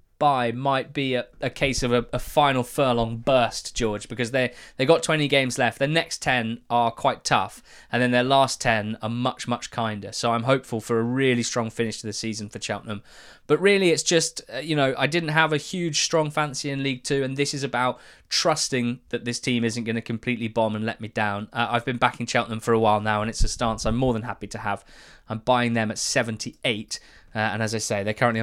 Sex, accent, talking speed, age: male, British, 235 wpm, 20-39